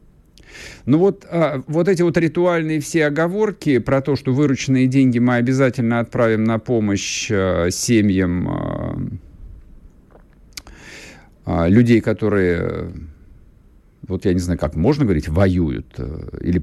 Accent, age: native, 50-69